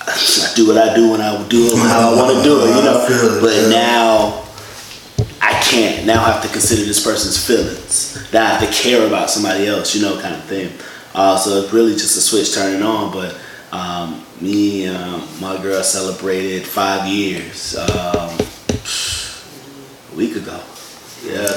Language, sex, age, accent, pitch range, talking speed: English, male, 20-39, American, 95-115 Hz, 180 wpm